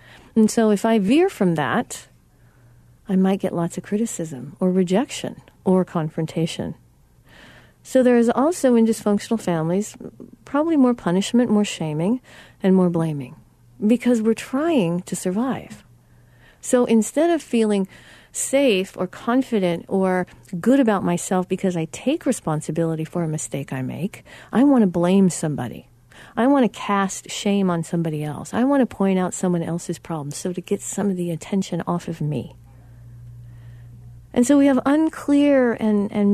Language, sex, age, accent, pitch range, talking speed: English, female, 50-69, American, 150-230 Hz, 155 wpm